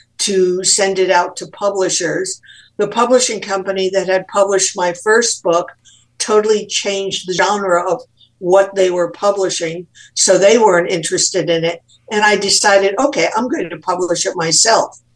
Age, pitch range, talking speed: 60-79, 170-205 Hz, 160 wpm